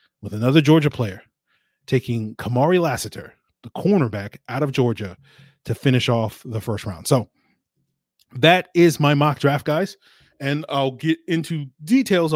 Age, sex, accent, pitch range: 30-49, male, American, 125-165 Hz